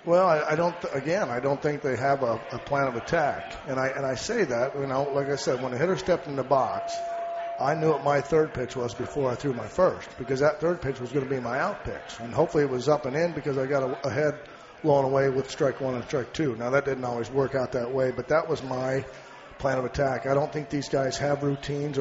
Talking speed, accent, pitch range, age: 275 wpm, American, 130-150 Hz, 40-59